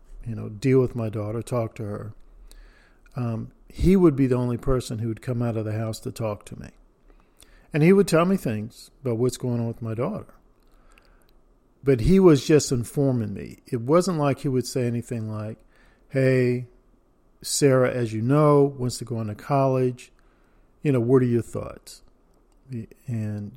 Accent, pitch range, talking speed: American, 115-135 Hz, 185 wpm